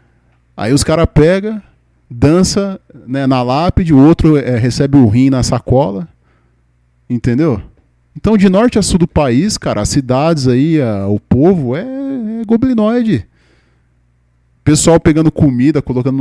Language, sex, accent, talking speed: Portuguese, male, Brazilian, 140 wpm